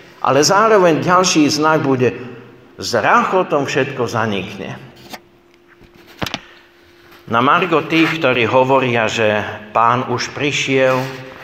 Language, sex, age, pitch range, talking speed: Slovak, male, 60-79, 115-145 Hz, 95 wpm